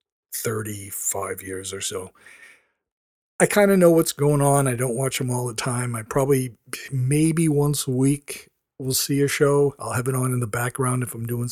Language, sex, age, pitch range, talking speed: English, male, 50-69, 120-155 Hz, 200 wpm